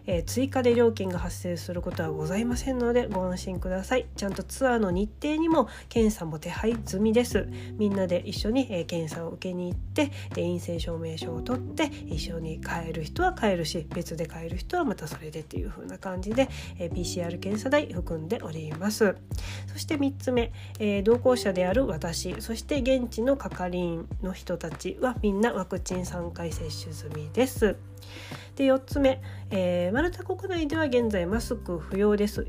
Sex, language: female, Japanese